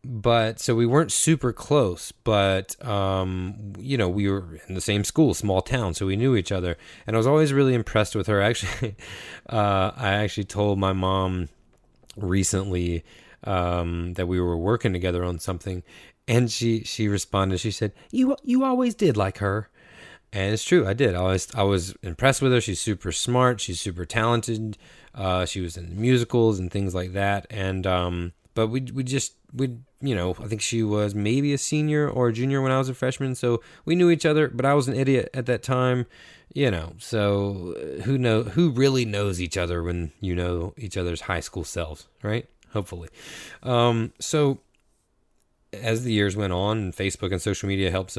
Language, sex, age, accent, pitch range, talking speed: English, male, 20-39, American, 95-125 Hz, 195 wpm